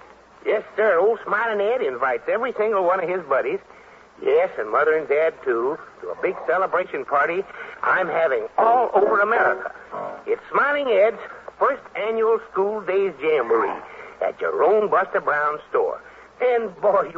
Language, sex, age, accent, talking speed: English, male, 60-79, American, 155 wpm